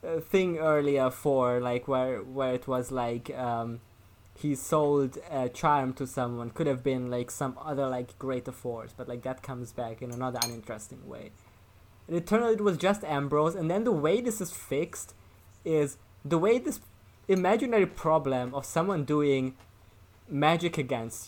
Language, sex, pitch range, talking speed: English, male, 120-170 Hz, 170 wpm